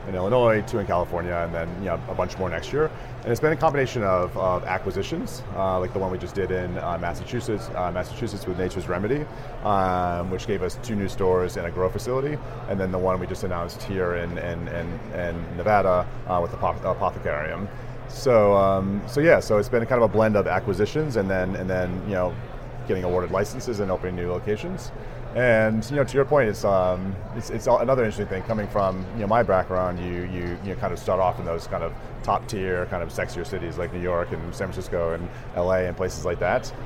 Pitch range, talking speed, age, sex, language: 90-110 Hz, 230 wpm, 30-49, male, English